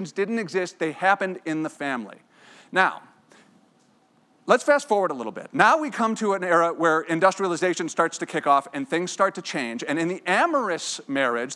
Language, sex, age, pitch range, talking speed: English, male, 40-59, 160-220 Hz, 185 wpm